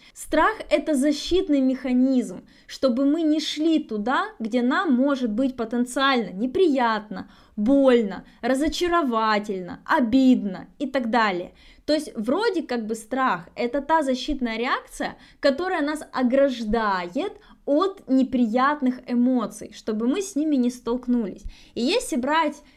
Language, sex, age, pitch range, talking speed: Russian, female, 20-39, 235-290 Hz, 120 wpm